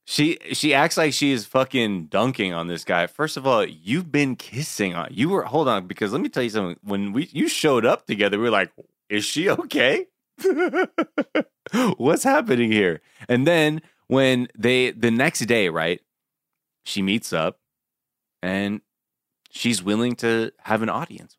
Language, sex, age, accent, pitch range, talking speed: English, male, 20-39, American, 100-155 Hz, 170 wpm